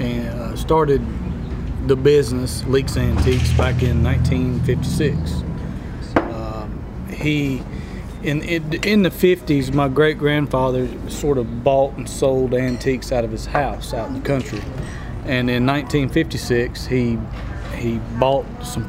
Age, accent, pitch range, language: 40-59, American, 120-140 Hz, English